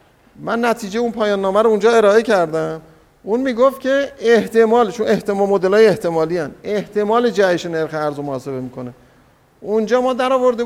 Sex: male